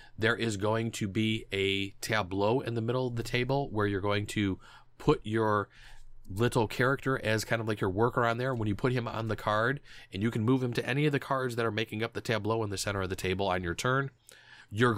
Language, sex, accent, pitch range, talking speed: English, male, American, 100-125 Hz, 250 wpm